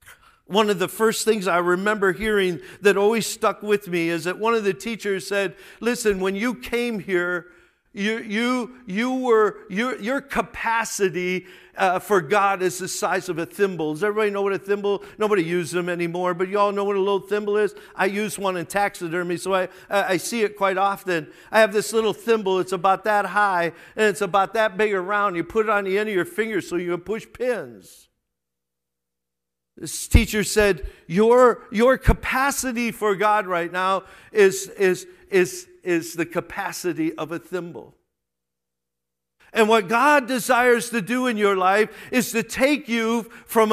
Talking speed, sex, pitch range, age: 185 wpm, male, 185-230 Hz, 50-69